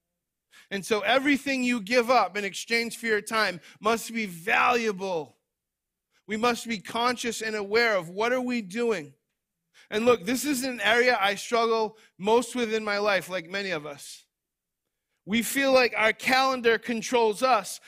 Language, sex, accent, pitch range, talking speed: English, male, American, 185-240 Hz, 165 wpm